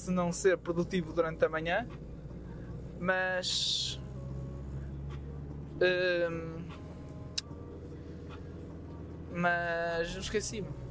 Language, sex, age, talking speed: Portuguese, male, 20-39, 55 wpm